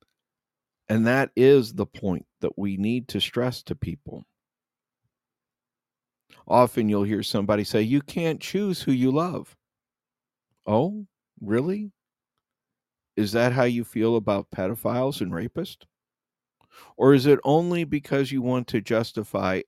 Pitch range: 105-135 Hz